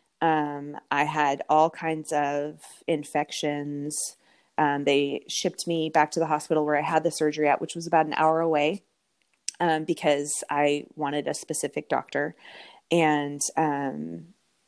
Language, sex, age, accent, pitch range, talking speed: English, female, 30-49, American, 150-175 Hz, 145 wpm